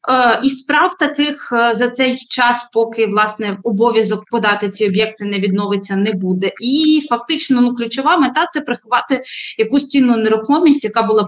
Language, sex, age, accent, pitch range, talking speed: Ukrainian, female, 20-39, native, 215-270 Hz, 155 wpm